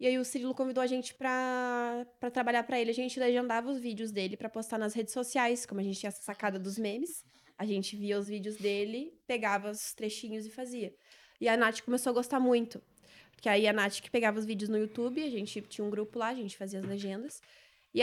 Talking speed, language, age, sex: 235 wpm, Portuguese, 20-39, female